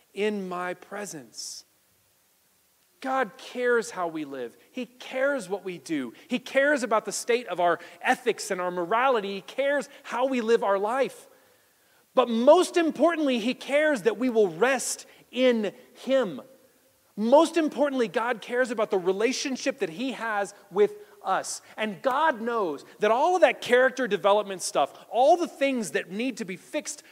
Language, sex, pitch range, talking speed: English, male, 195-265 Hz, 160 wpm